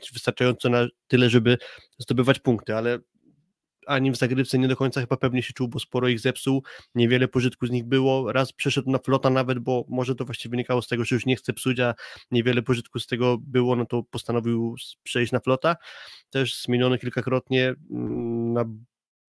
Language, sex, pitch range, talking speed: Polish, male, 120-130 Hz, 180 wpm